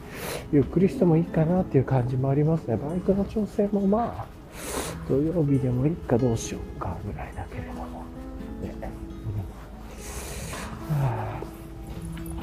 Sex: male